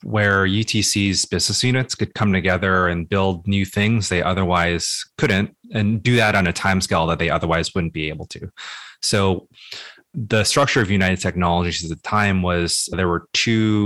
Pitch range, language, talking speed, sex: 85-105 Hz, English, 175 wpm, male